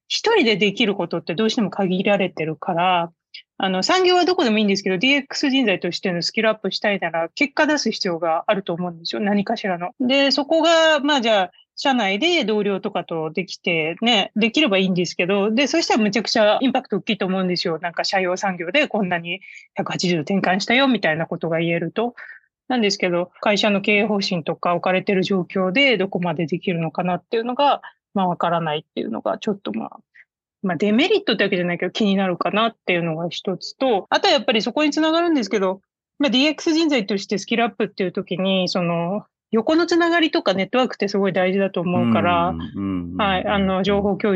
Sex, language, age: female, Japanese, 30-49